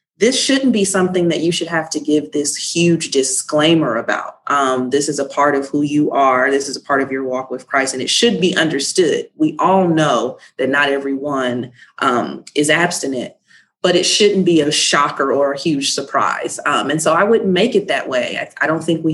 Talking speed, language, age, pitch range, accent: 220 wpm, English, 30-49, 140-165 Hz, American